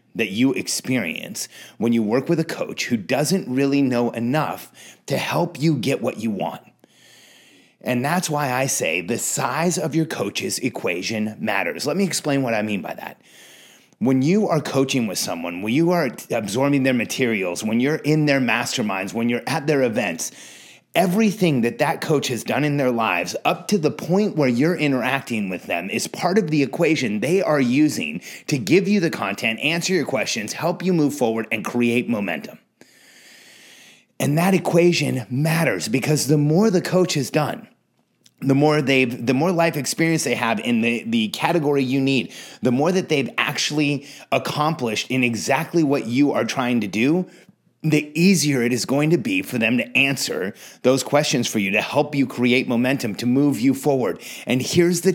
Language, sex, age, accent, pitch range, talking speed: English, male, 30-49, American, 125-165 Hz, 185 wpm